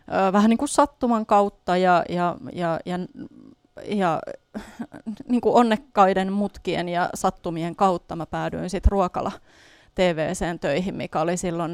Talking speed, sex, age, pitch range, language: 130 wpm, female, 30-49, 175-200 Hz, Finnish